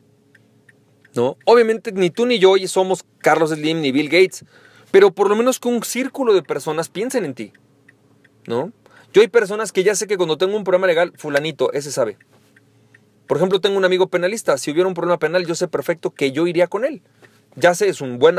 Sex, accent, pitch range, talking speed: male, Mexican, 150-215 Hz, 210 wpm